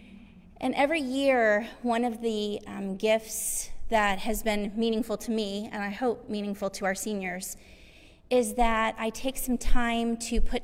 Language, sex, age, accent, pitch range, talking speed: English, female, 30-49, American, 205-260 Hz, 165 wpm